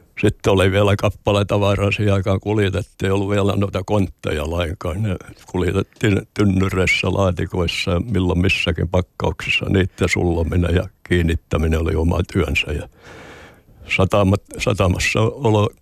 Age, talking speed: 60-79, 100 wpm